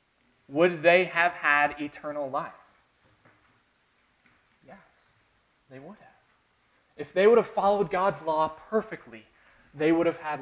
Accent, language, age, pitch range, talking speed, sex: American, English, 20-39, 130-175 Hz, 125 wpm, male